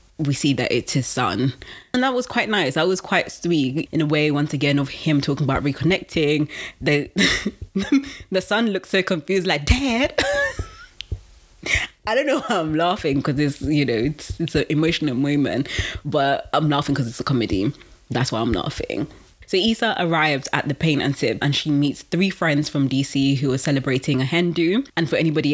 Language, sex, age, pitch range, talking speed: English, female, 20-39, 140-165 Hz, 195 wpm